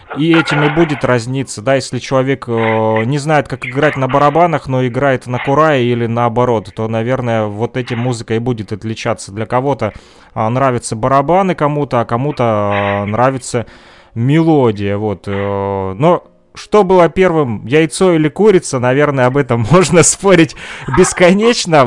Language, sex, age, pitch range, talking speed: Russian, male, 20-39, 115-145 Hz, 145 wpm